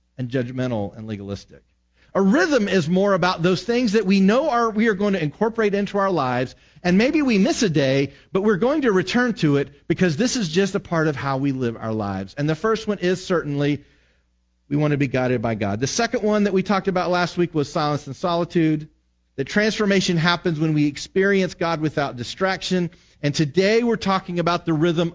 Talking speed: 215 wpm